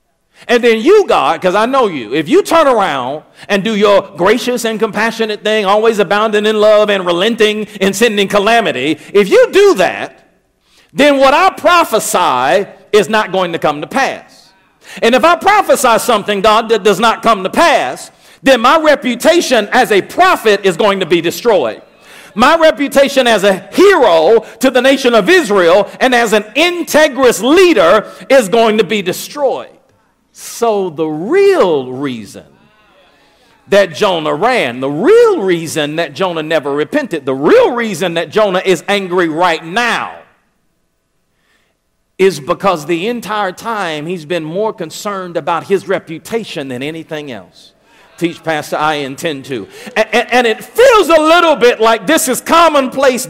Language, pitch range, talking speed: English, 190-270 Hz, 155 wpm